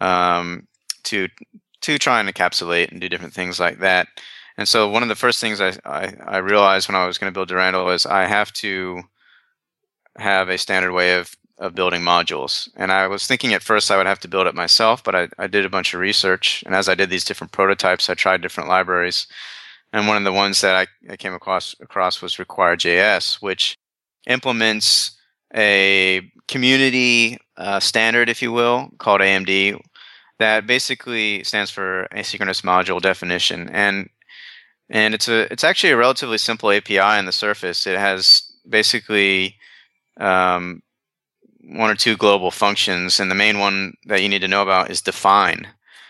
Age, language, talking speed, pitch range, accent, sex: 30-49, English, 180 wpm, 95-110 Hz, American, male